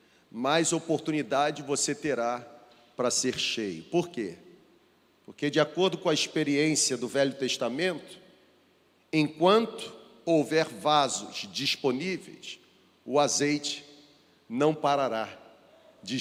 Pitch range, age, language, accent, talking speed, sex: 140-195 Hz, 40-59, Portuguese, Brazilian, 100 wpm, male